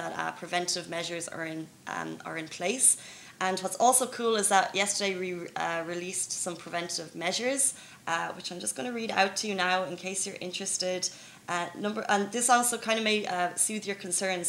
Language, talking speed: Arabic, 205 wpm